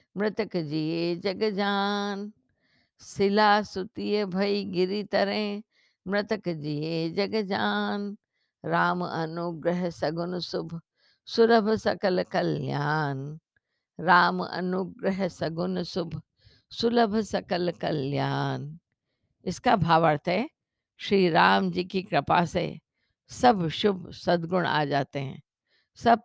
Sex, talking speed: female, 100 wpm